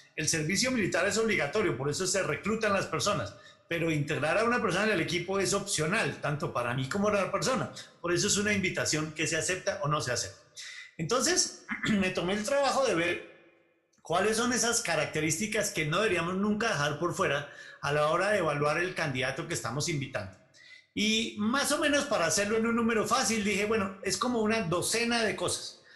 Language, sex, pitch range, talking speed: Spanish, male, 165-225 Hz, 200 wpm